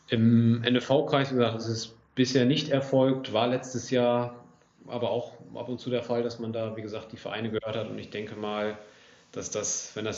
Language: German